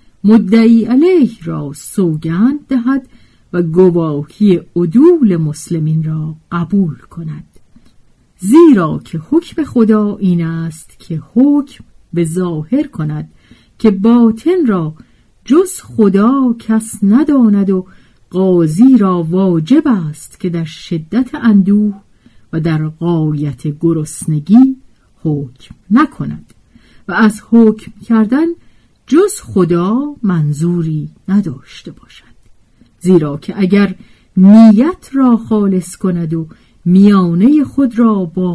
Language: Persian